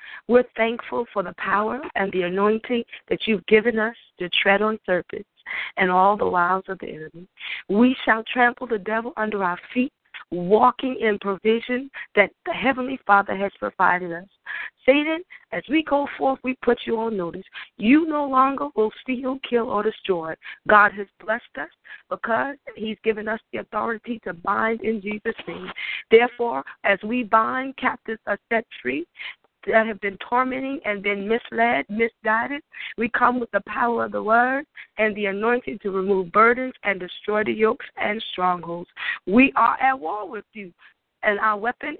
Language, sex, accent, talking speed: English, female, American, 170 wpm